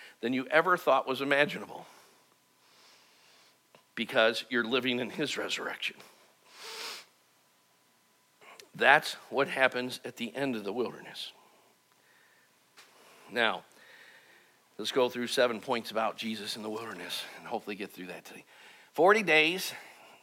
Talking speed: 120 wpm